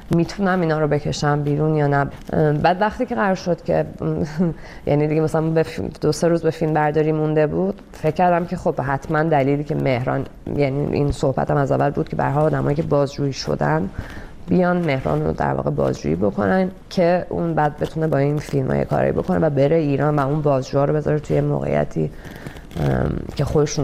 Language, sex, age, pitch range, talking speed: Persian, female, 20-39, 140-165 Hz, 185 wpm